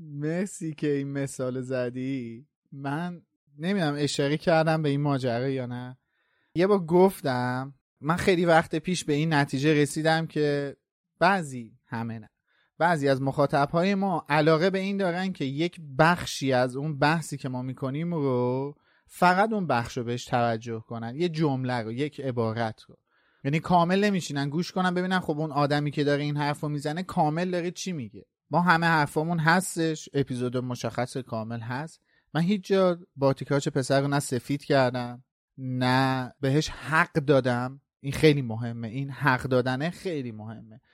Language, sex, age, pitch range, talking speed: Persian, male, 30-49, 130-165 Hz, 160 wpm